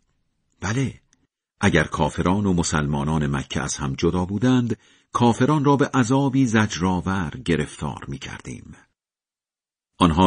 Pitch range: 80-115 Hz